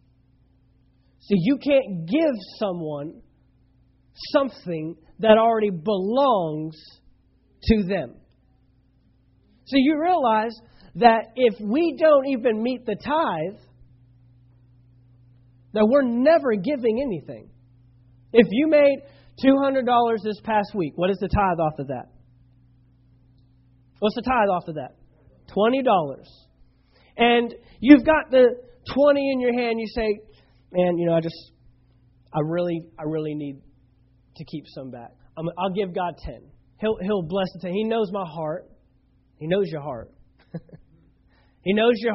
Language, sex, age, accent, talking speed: English, male, 40-59, American, 130 wpm